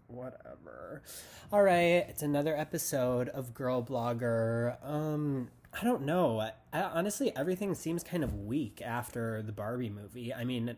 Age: 20-39